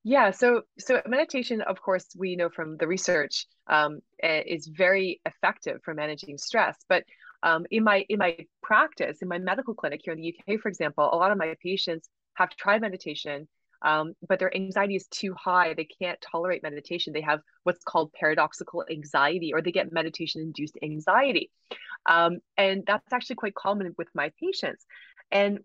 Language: English